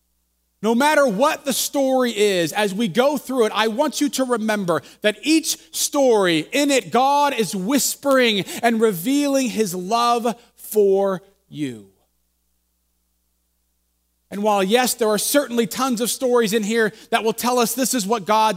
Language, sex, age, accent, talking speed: English, male, 30-49, American, 160 wpm